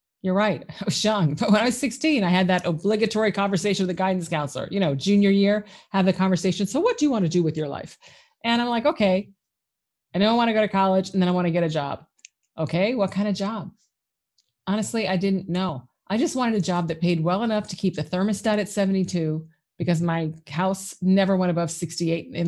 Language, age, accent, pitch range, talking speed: English, 30-49, American, 175-215 Hz, 235 wpm